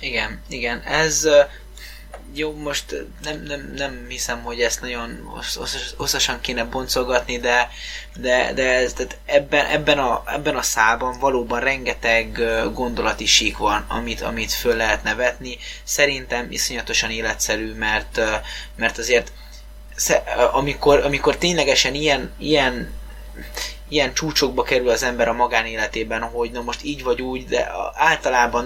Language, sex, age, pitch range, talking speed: Hungarian, male, 20-39, 115-135 Hz, 130 wpm